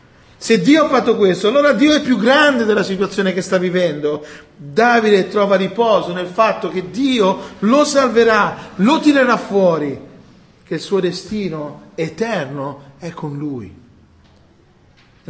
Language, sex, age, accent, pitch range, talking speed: Italian, male, 40-59, native, 150-220 Hz, 140 wpm